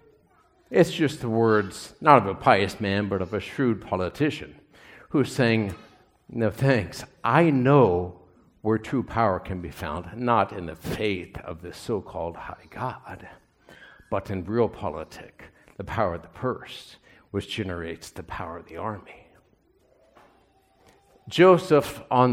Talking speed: 140 wpm